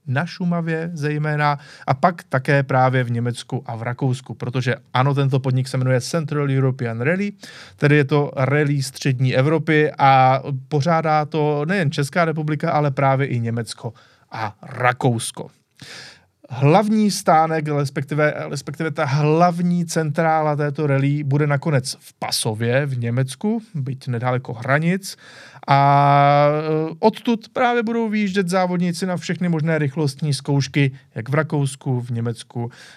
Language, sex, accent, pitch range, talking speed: Czech, male, native, 130-160 Hz, 135 wpm